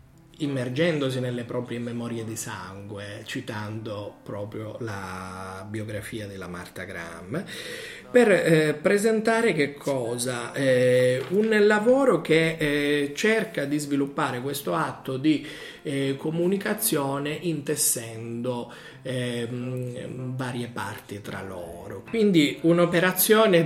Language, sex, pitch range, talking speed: Italian, male, 115-165 Hz, 100 wpm